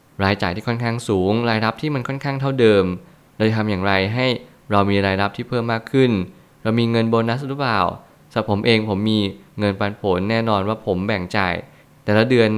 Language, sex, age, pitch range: Thai, male, 20-39, 100-120 Hz